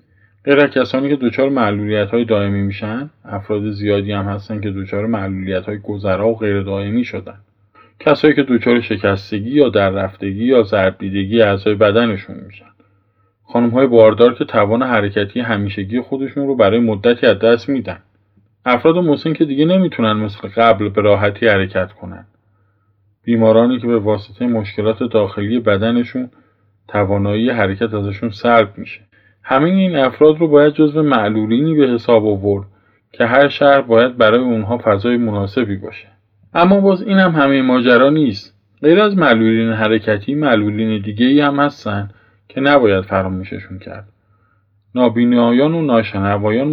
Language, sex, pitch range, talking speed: Persian, male, 100-125 Hz, 135 wpm